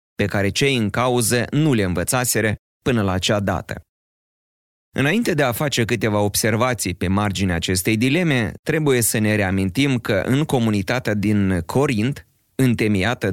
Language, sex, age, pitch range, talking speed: Romanian, male, 30-49, 95-125 Hz, 145 wpm